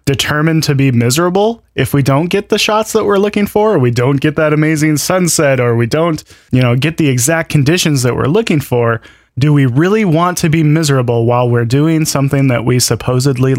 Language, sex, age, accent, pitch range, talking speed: English, male, 20-39, American, 125-160 Hz, 210 wpm